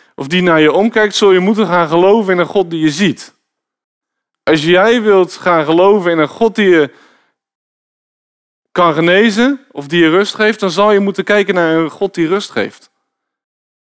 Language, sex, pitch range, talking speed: Dutch, male, 140-195 Hz, 190 wpm